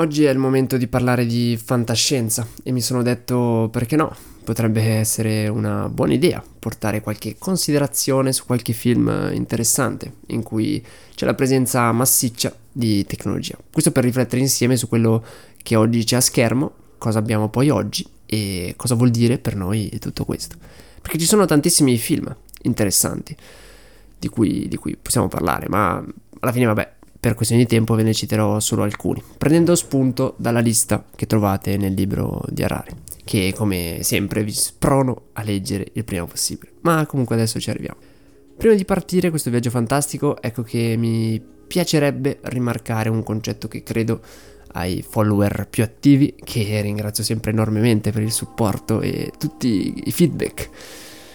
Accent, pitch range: native, 110-130 Hz